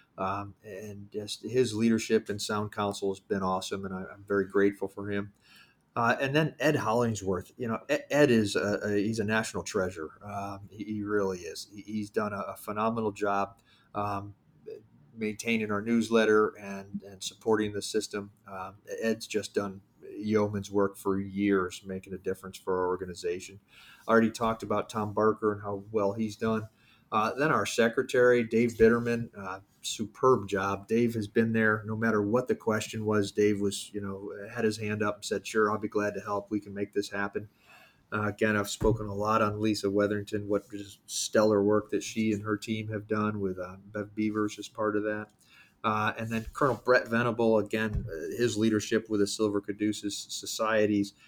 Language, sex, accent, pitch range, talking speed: English, male, American, 100-110 Hz, 190 wpm